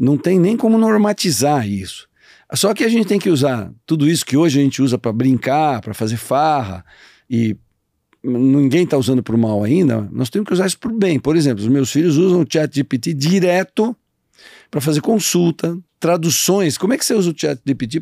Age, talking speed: 50-69, 210 wpm